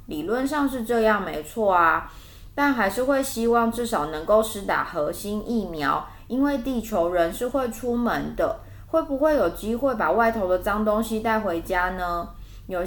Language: Chinese